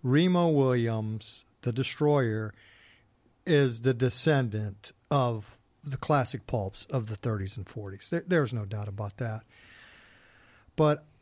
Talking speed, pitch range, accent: 125 wpm, 115-150 Hz, American